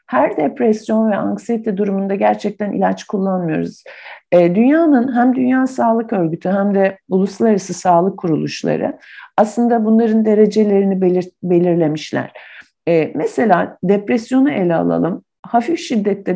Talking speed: 105 wpm